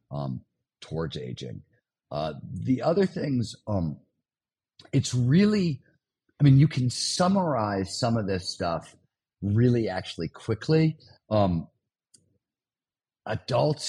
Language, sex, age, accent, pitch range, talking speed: English, male, 50-69, American, 90-125 Hz, 105 wpm